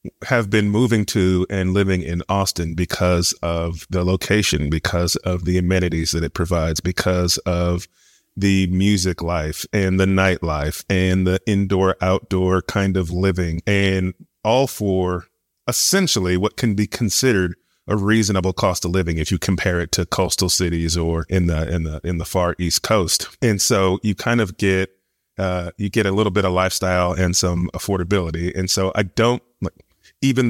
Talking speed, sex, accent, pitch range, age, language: 170 wpm, male, American, 90-100 Hz, 30-49, English